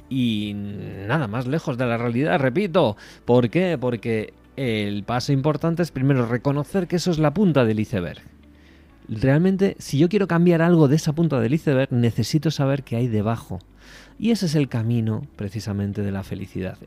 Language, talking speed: Spanish, 175 wpm